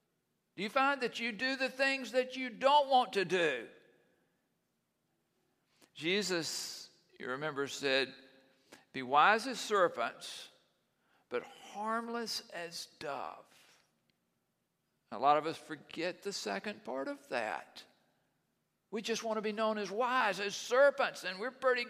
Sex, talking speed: male, 135 wpm